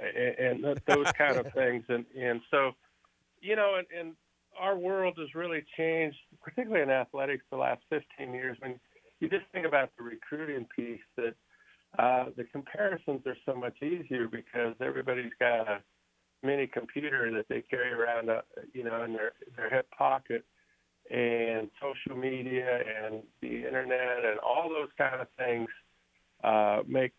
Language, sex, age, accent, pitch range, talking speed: English, male, 50-69, American, 110-140 Hz, 160 wpm